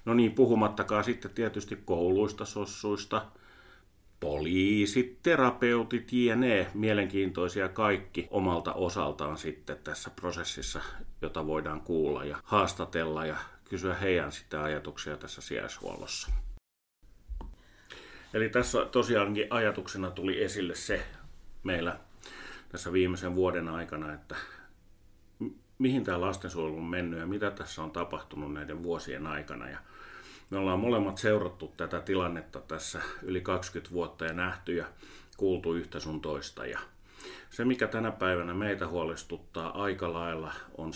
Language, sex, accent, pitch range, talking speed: Finnish, male, native, 80-100 Hz, 120 wpm